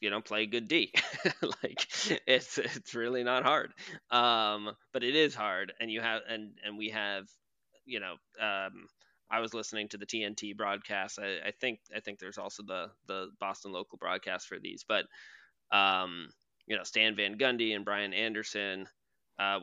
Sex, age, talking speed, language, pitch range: male, 20-39, 180 wpm, English, 100-120 Hz